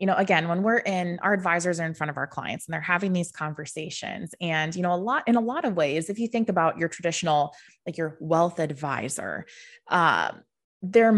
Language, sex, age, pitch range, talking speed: English, female, 20-39, 165-215 Hz, 220 wpm